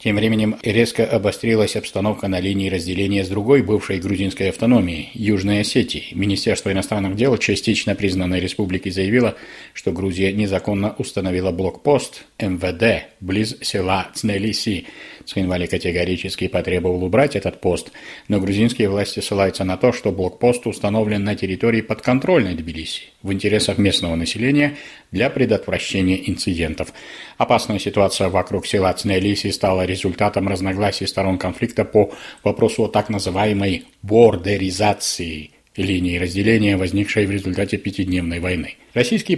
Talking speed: 125 wpm